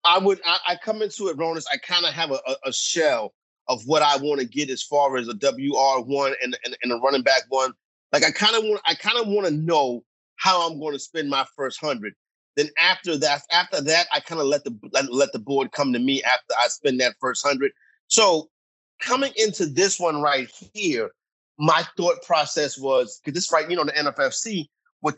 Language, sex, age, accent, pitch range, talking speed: English, male, 30-49, American, 140-215 Hz, 230 wpm